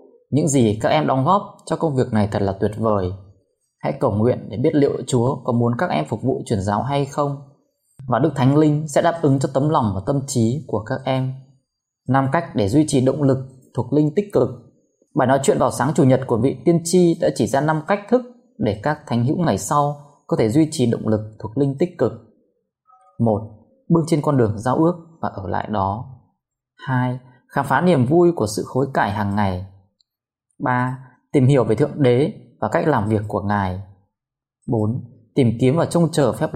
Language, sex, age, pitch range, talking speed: Vietnamese, male, 20-39, 115-155 Hz, 215 wpm